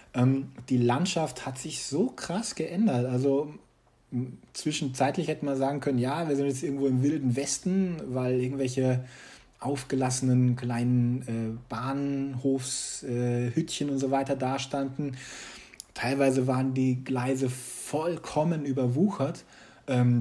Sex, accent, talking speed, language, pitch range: male, German, 115 wpm, German, 120-140 Hz